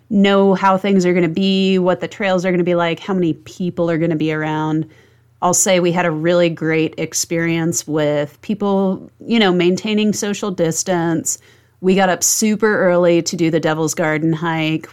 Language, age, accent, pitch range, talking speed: English, 30-49, American, 155-185 Hz, 195 wpm